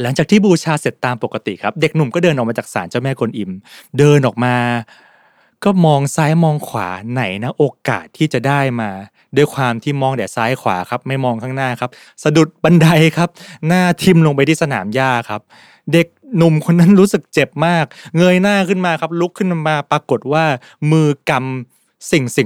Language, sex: Thai, male